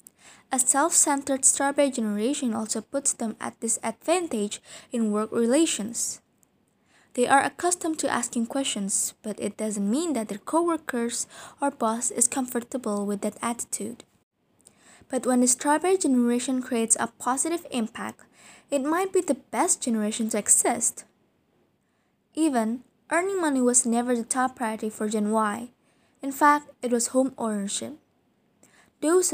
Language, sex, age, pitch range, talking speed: English, female, 20-39, 225-280 Hz, 140 wpm